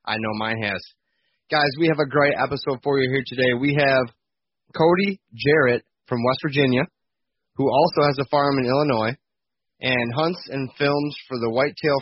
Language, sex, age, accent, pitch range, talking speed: English, male, 20-39, American, 115-140 Hz, 175 wpm